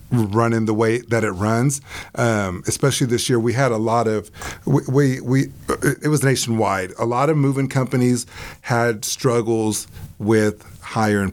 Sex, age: male, 30-49